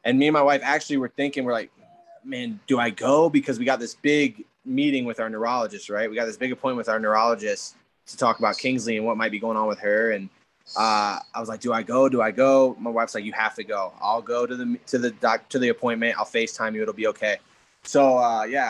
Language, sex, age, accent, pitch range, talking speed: English, male, 20-39, American, 115-130 Hz, 265 wpm